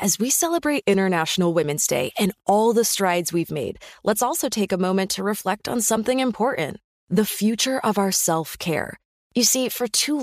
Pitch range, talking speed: 180-235 Hz, 180 wpm